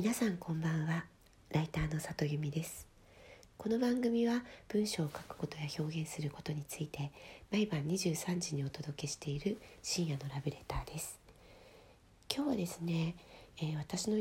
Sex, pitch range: female, 150-200 Hz